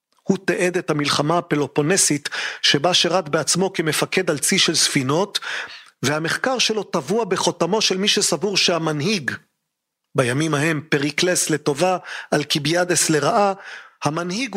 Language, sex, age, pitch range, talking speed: Hebrew, male, 40-59, 155-200 Hz, 115 wpm